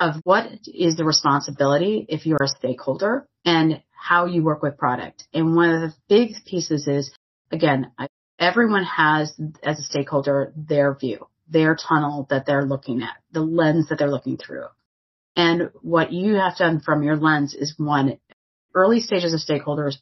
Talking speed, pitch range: 170 wpm, 145-175 Hz